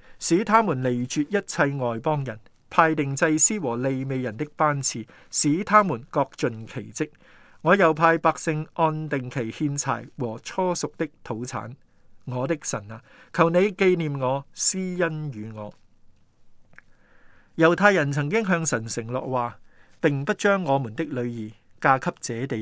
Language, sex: Chinese, male